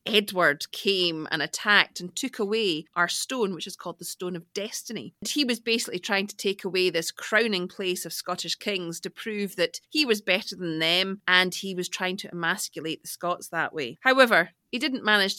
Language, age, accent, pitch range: English, 30-49, British, 175-220 Hz